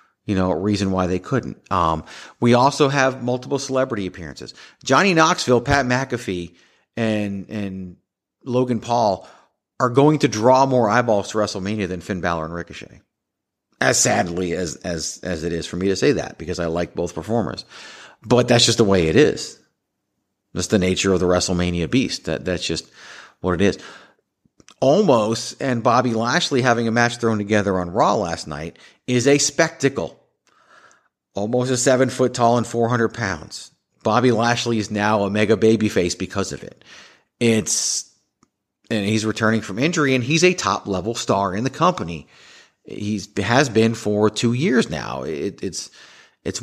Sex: male